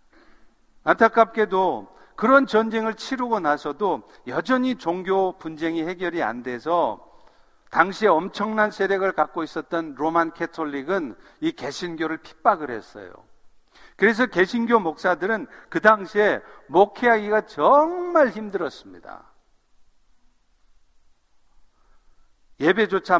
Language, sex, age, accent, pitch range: Korean, male, 50-69, native, 160-210 Hz